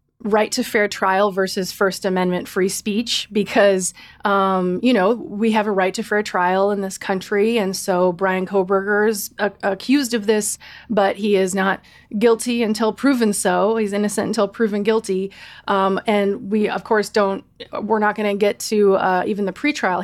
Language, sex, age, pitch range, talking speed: English, female, 20-39, 190-225 Hz, 180 wpm